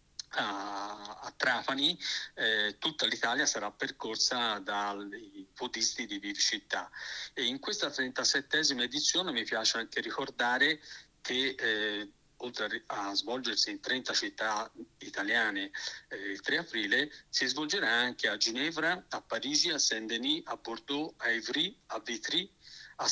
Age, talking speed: 50-69, 130 wpm